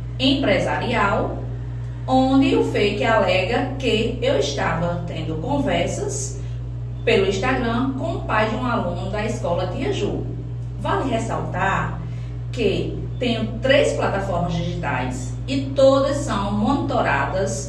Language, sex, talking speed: Portuguese, female, 110 wpm